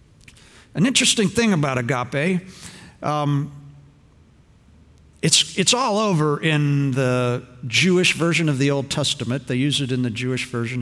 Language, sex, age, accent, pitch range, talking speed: English, male, 50-69, American, 115-150 Hz, 140 wpm